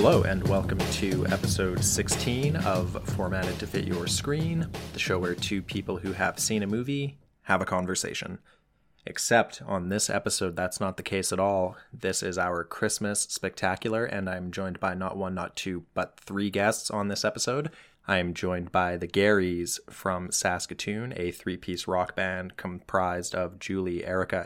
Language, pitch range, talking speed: English, 90-105 Hz, 170 wpm